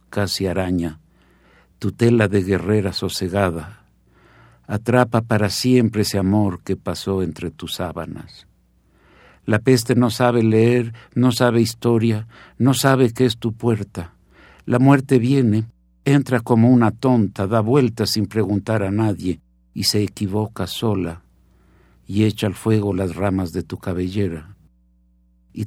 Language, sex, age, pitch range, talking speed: Italian, male, 60-79, 85-110 Hz, 135 wpm